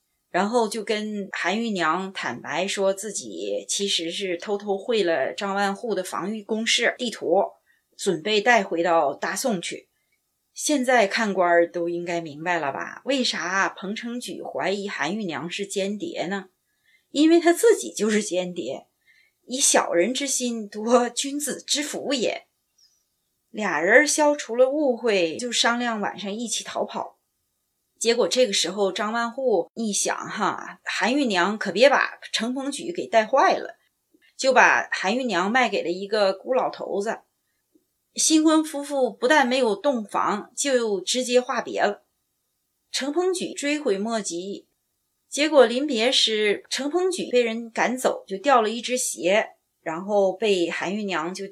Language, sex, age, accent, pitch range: Chinese, female, 30-49, native, 190-260 Hz